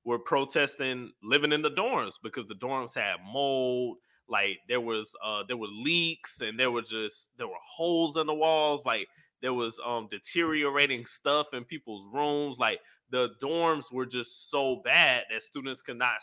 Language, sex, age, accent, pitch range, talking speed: English, male, 20-39, American, 120-150 Hz, 180 wpm